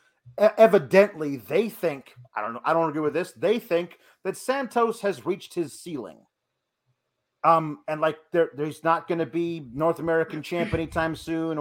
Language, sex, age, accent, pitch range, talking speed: English, male, 40-59, American, 130-170 Hz, 170 wpm